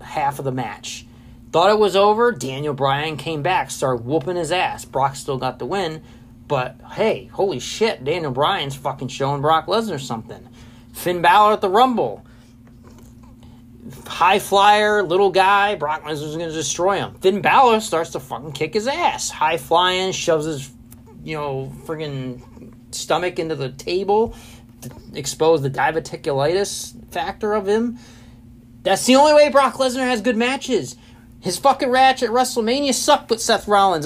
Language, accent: English, American